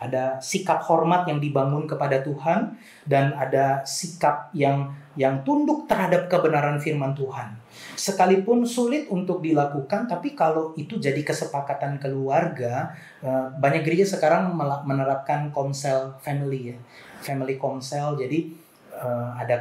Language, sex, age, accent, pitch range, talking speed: Indonesian, male, 30-49, native, 135-170 Hz, 115 wpm